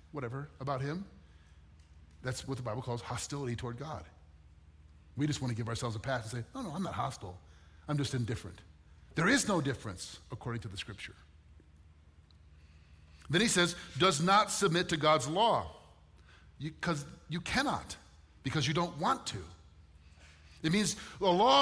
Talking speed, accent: 160 wpm, American